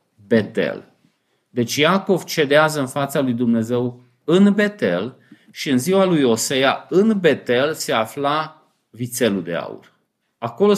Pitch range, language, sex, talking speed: 125-180 Hz, Romanian, male, 130 wpm